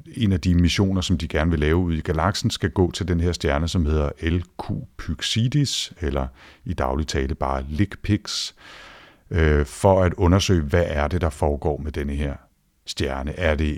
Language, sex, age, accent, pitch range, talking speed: Danish, male, 50-69, native, 75-90 Hz, 185 wpm